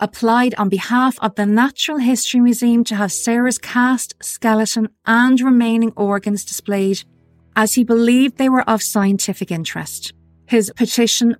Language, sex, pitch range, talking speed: English, female, 190-240 Hz, 140 wpm